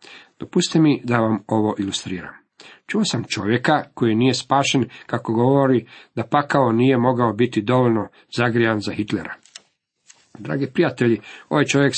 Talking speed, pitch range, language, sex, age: 135 wpm, 110-135 Hz, Croatian, male, 50-69